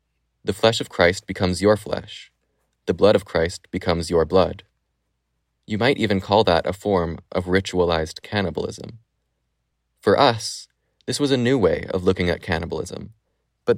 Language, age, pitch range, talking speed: English, 20-39, 85-105 Hz, 155 wpm